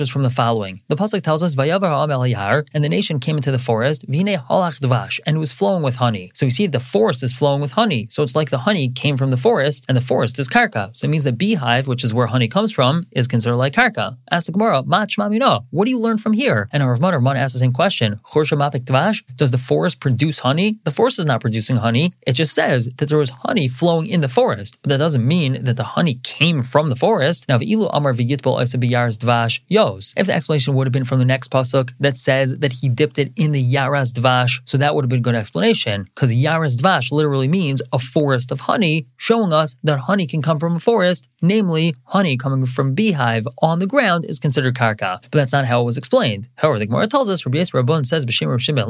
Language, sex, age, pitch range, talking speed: English, male, 20-39, 125-165 Hz, 225 wpm